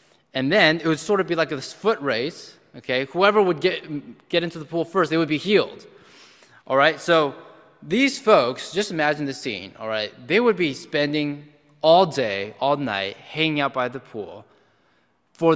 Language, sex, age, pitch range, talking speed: English, male, 20-39, 115-160 Hz, 190 wpm